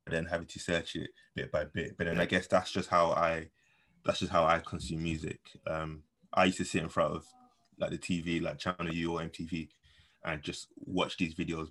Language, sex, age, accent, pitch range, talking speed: English, male, 20-39, British, 85-100 Hz, 225 wpm